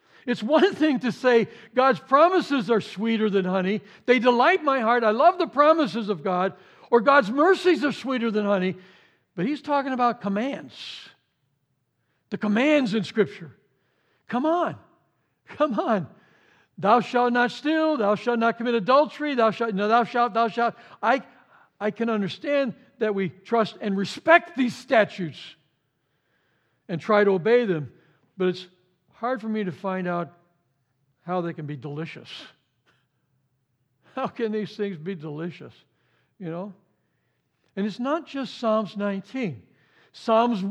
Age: 60-79